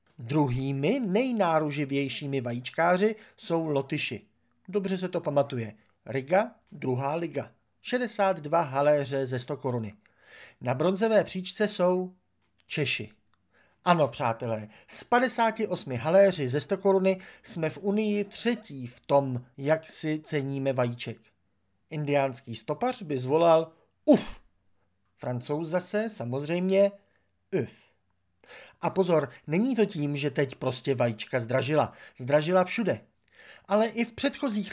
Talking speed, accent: 110 wpm, native